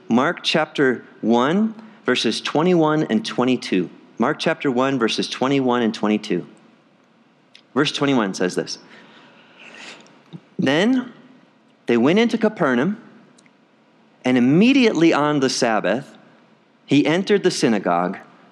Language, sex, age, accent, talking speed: English, male, 40-59, American, 105 wpm